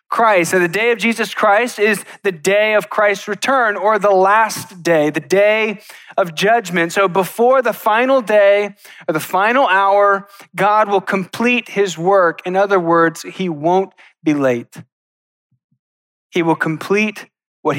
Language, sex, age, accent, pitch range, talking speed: English, male, 20-39, American, 155-200 Hz, 155 wpm